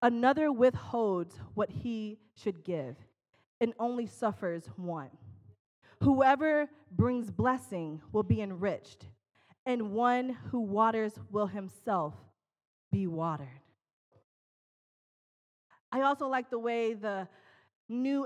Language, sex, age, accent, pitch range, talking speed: English, female, 20-39, American, 210-285 Hz, 100 wpm